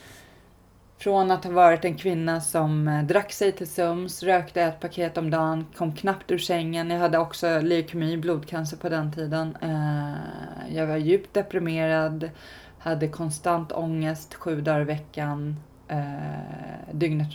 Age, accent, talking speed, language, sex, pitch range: 20-39, native, 140 wpm, Swedish, female, 150-175 Hz